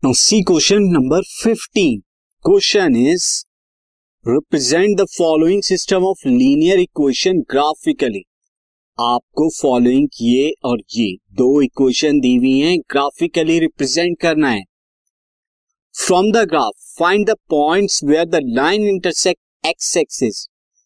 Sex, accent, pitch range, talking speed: male, native, 135-210 Hz, 110 wpm